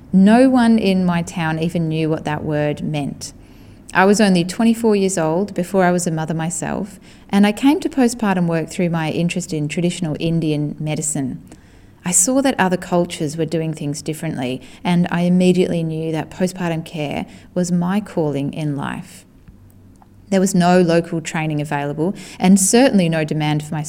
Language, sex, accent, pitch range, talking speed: English, female, Australian, 150-185 Hz, 175 wpm